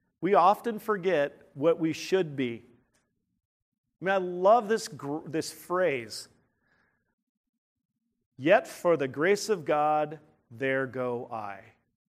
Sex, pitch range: male, 130-170 Hz